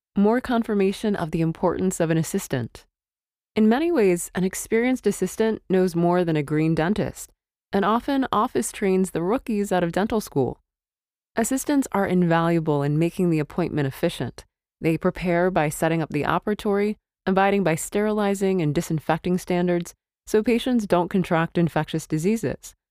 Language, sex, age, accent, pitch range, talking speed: English, female, 20-39, American, 160-210 Hz, 150 wpm